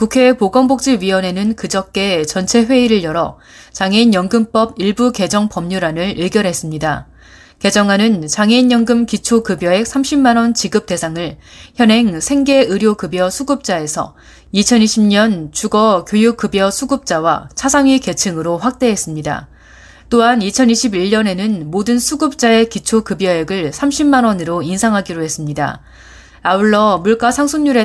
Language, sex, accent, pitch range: Korean, female, native, 170-230 Hz